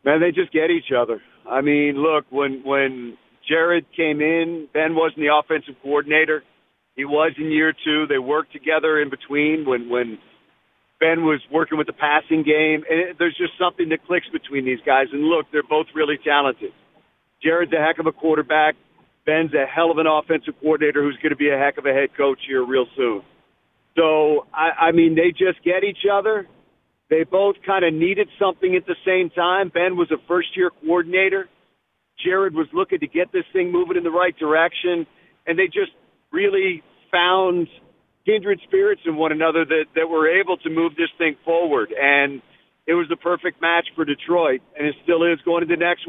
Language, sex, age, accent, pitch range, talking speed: English, male, 50-69, American, 150-180 Hz, 195 wpm